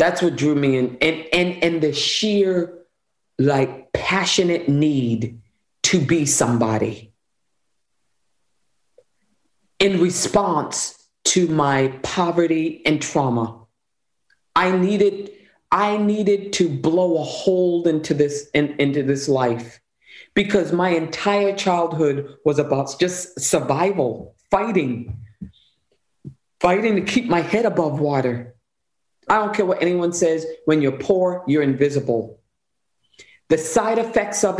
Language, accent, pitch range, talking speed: English, American, 140-185 Hz, 120 wpm